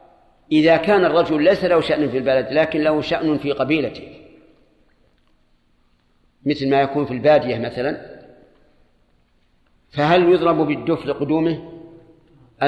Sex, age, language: male, 50-69, Arabic